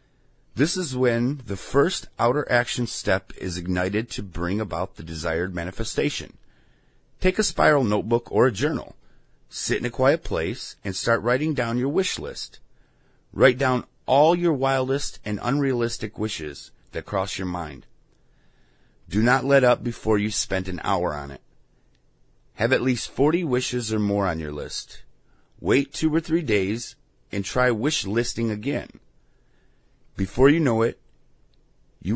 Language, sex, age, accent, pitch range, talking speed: English, male, 30-49, American, 100-135 Hz, 155 wpm